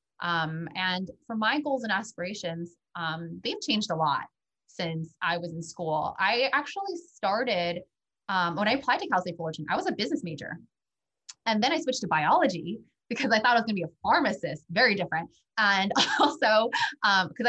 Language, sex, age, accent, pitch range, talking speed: English, female, 20-39, American, 170-225 Hz, 185 wpm